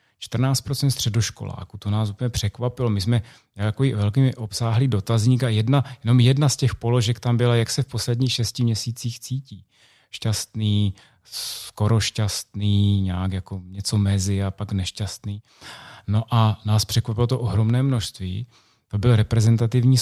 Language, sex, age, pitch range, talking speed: Czech, male, 30-49, 105-125 Hz, 140 wpm